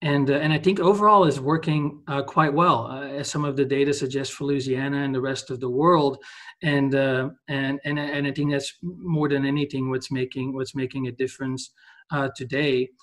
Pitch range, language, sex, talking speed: 140-165 Hz, English, male, 205 wpm